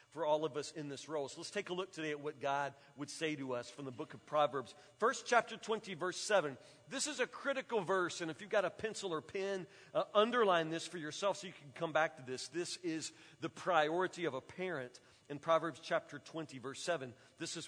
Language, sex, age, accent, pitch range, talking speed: English, male, 40-59, American, 155-215 Hz, 240 wpm